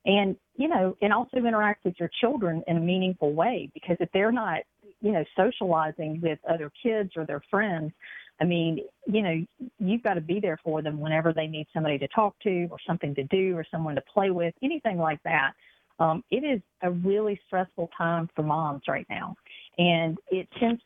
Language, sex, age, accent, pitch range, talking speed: English, female, 50-69, American, 160-195 Hz, 200 wpm